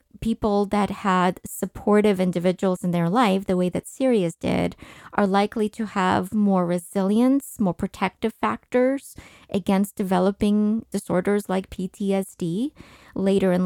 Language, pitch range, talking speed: English, 175-210 Hz, 125 wpm